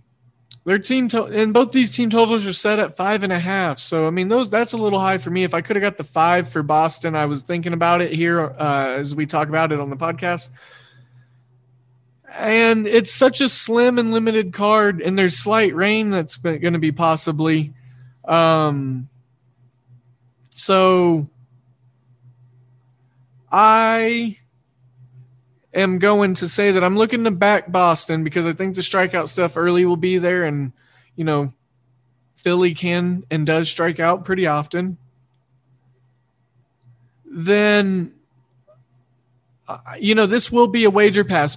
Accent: American